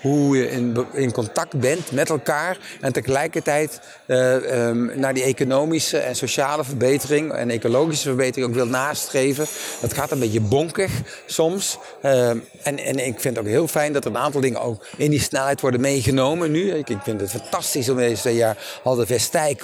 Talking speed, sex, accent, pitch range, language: 190 wpm, male, Dutch, 120-145 Hz, Dutch